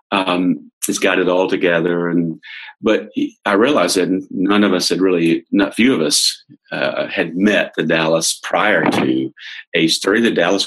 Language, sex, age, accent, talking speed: English, male, 50-69, American, 175 wpm